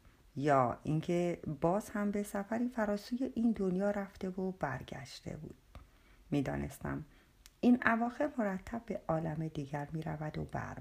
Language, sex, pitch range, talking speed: Persian, female, 150-215 Hz, 135 wpm